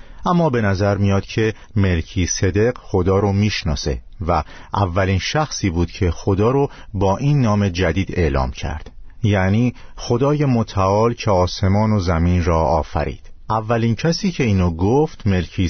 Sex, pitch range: male, 85-120 Hz